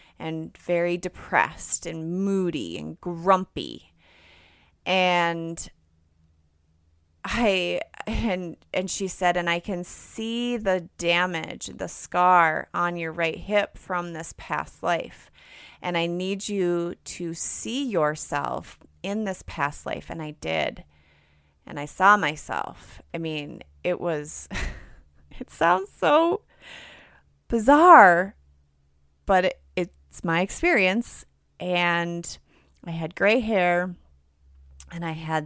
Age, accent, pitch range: 30-49, American, 125-185 Hz